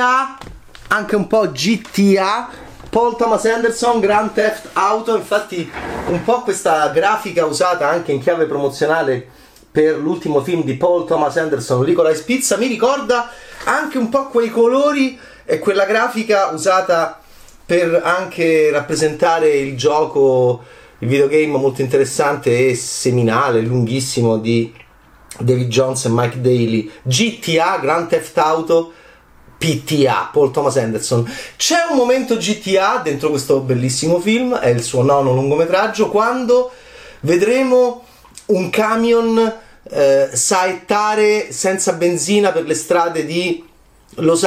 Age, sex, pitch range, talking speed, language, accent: 30-49, male, 135-215 Hz, 125 wpm, Italian, native